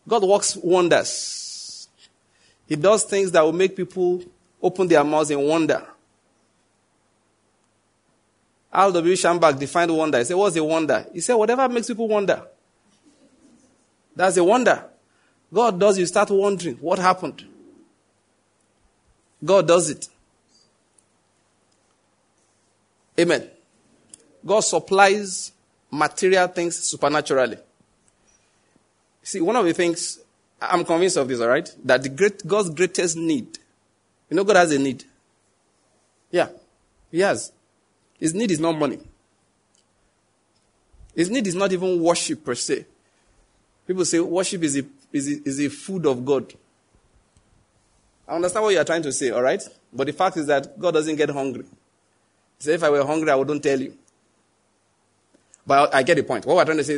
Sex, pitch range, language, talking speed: male, 120-185 Hz, English, 145 wpm